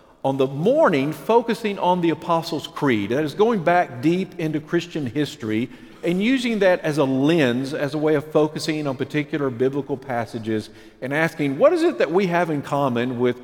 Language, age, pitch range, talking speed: English, 50-69, 120-175 Hz, 190 wpm